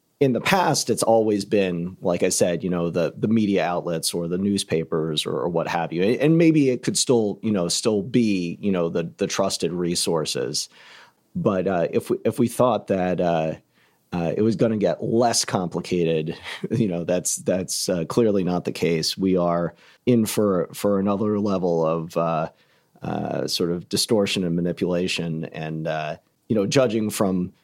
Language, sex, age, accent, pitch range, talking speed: English, male, 40-59, American, 85-110 Hz, 185 wpm